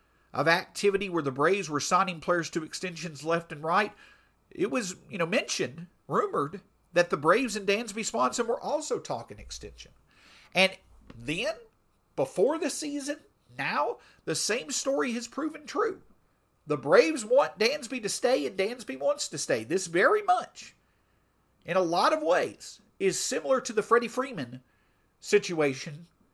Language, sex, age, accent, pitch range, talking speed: English, male, 50-69, American, 175-260 Hz, 155 wpm